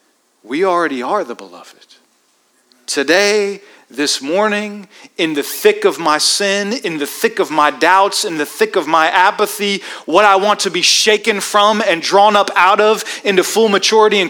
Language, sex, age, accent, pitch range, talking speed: English, male, 40-59, American, 150-225 Hz, 175 wpm